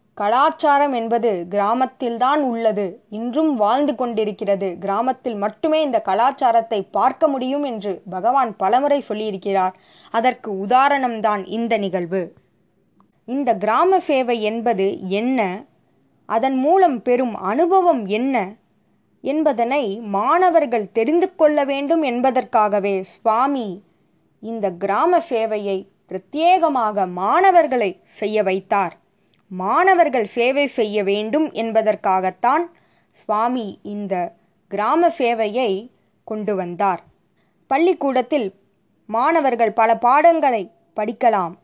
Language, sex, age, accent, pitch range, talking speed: Tamil, female, 20-39, native, 205-280 Hz, 90 wpm